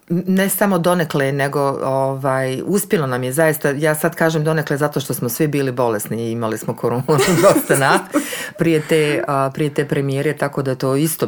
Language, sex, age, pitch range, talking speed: Croatian, female, 40-59, 125-165 Hz, 170 wpm